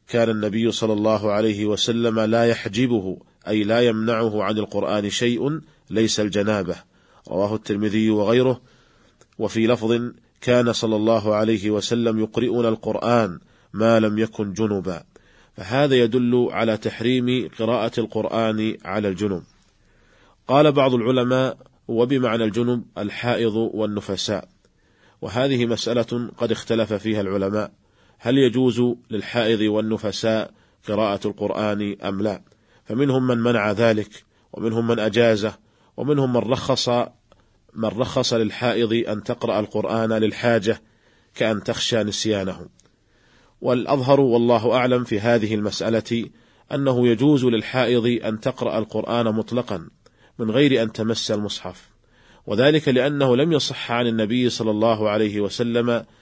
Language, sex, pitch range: Arabic, male, 105-120 Hz